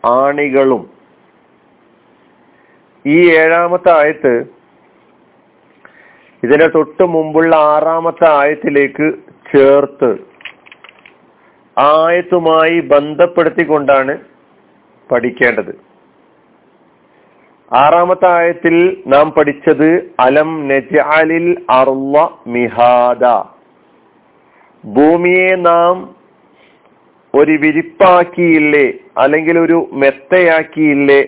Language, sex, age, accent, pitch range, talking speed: Malayalam, male, 50-69, native, 145-175 Hz, 55 wpm